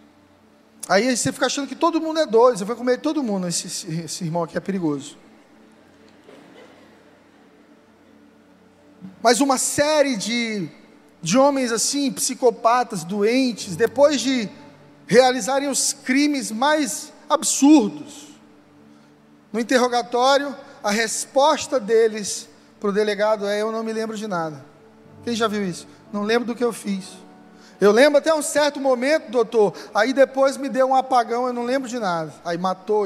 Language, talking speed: Portuguese, 150 wpm